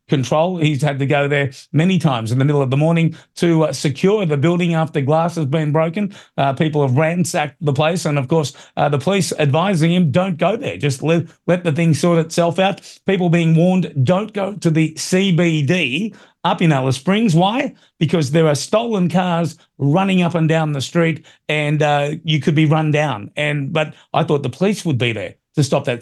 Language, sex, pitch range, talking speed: English, male, 140-165 Hz, 210 wpm